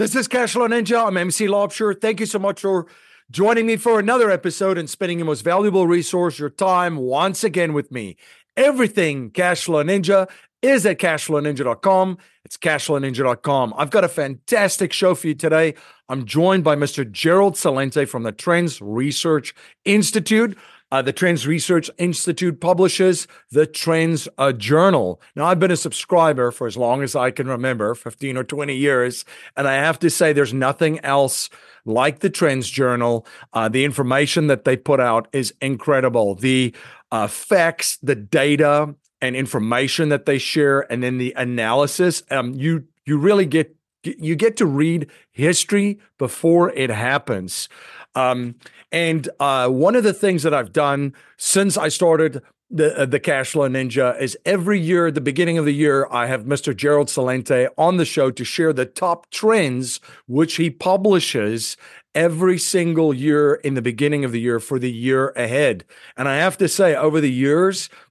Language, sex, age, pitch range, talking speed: English, male, 50-69, 135-180 Hz, 170 wpm